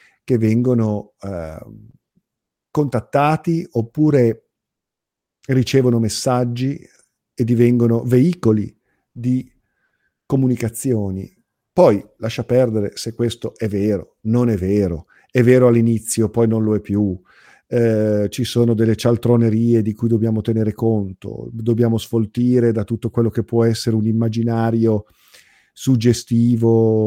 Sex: male